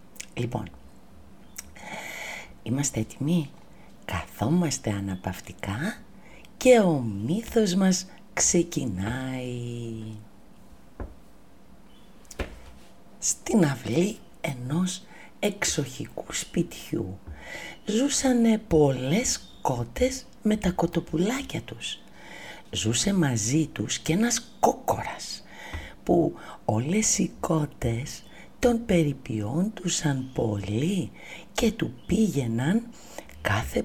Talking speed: 70 wpm